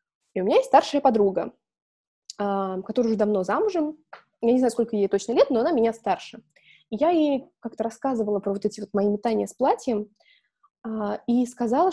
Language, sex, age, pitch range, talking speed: Russian, female, 20-39, 205-260 Hz, 180 wpm